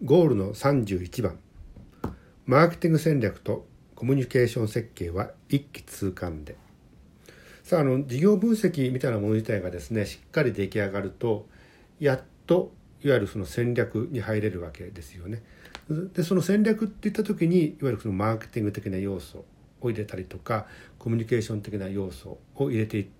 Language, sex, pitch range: Japanese, male, 95-140 Hz